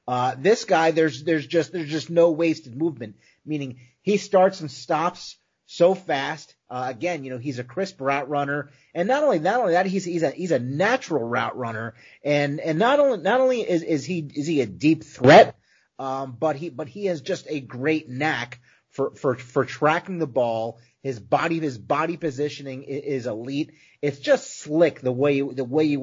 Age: 30-49